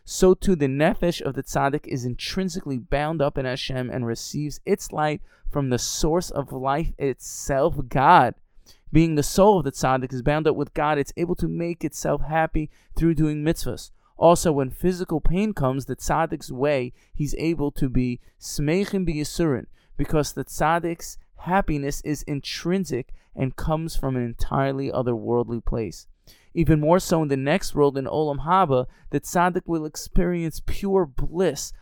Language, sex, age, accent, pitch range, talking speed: English, male, 20-39, American, 130-165 Hz, 160 wpm